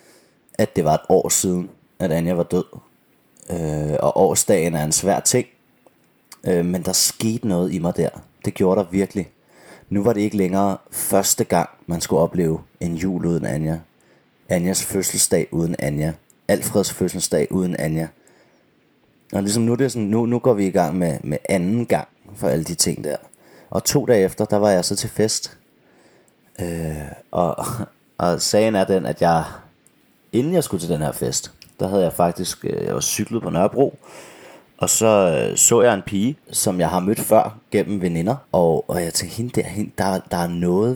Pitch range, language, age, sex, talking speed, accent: 85-110 Hz, Danish, 30-49, male, 180 wpm, native